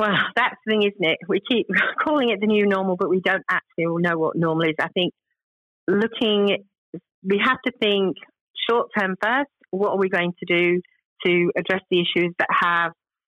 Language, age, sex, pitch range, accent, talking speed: English, 40-59, female, 175-215 Hz, British, 200 wpm